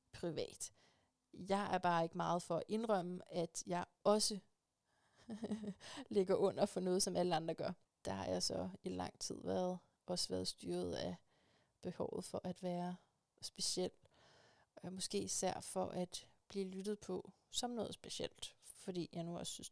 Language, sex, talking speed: Danish, female, 160 wpm